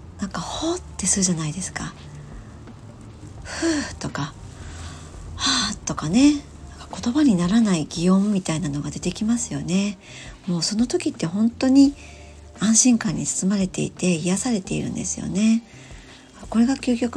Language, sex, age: Japanese, male, 40-59